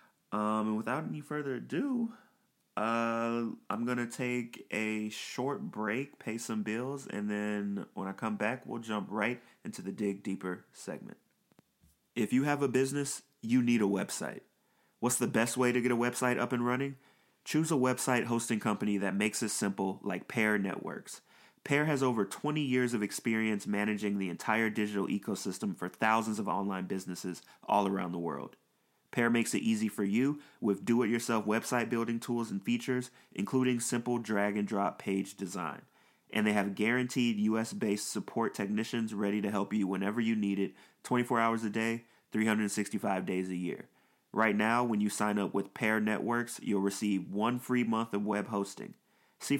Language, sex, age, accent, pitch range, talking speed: English, male, 30-49, American, 105-125 Hz, 175 wpm